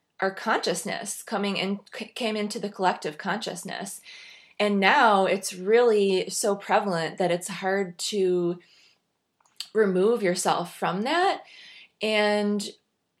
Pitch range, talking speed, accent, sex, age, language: 175-215 Hz, 110 wpm, American, female, 20-39, English